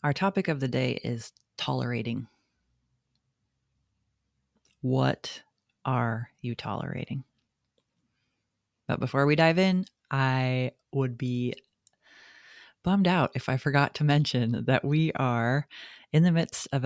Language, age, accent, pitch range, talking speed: English, 30-49, American, 120-150 Hz, 115 wpm